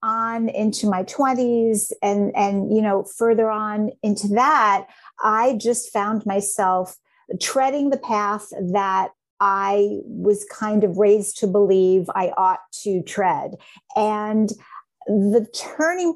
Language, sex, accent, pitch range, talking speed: English, female, American, 205-255 Hz, 125 wpm